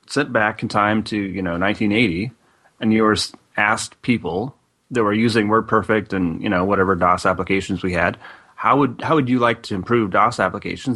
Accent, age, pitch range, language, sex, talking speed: American, 30-49, 95-115 Hz, English, male, 190 wpm